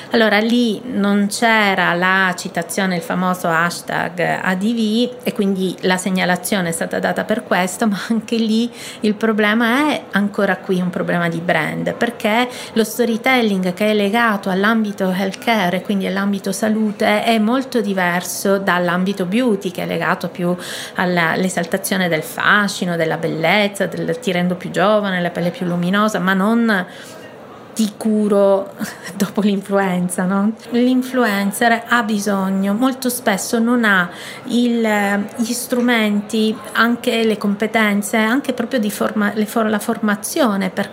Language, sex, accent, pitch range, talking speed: Italian, female, native, 185-230 Hz, 140 wpm